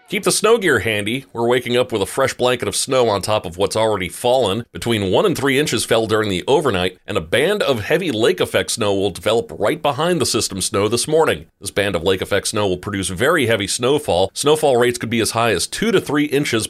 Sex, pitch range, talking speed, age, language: male, 100-130 Hz, 245 wpm, 40-59, English